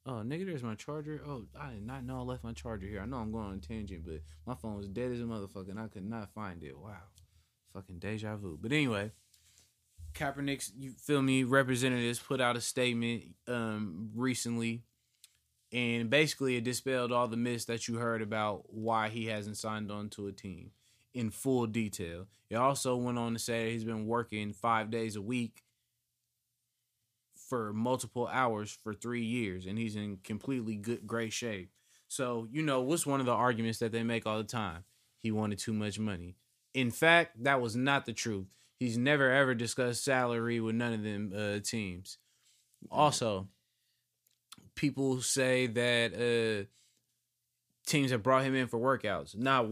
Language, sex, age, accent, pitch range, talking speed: English, male, 20-39, American, 110-125 Hz, 185 wpm